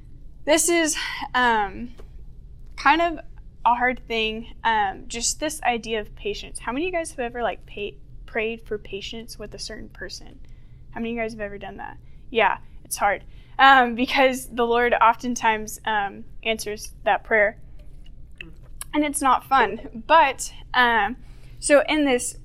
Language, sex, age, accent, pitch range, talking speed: English, female, 10-29, American, 220-255 Hz, 160 wpm